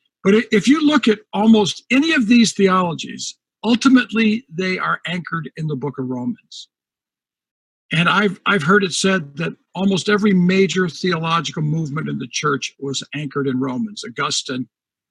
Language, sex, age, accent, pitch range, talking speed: English, male, 60-79, American, 160-215 Hz, 155 wpm